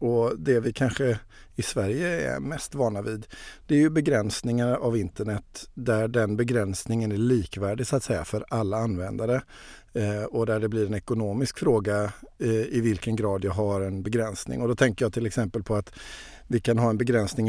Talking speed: 190 wpm